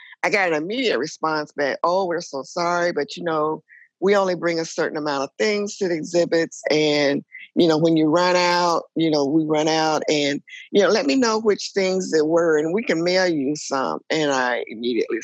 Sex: female